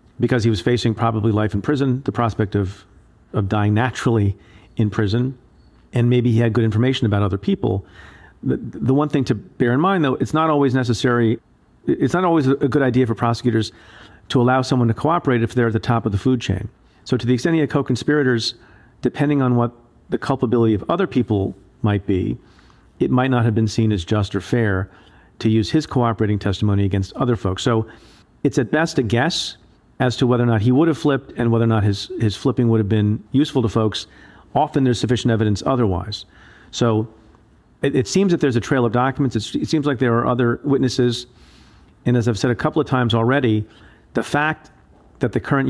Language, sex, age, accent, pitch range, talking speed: English, male, 40-59, American, 110-130 Hz, 210 wpm